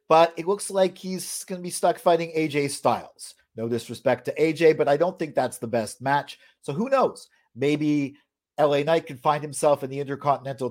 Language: English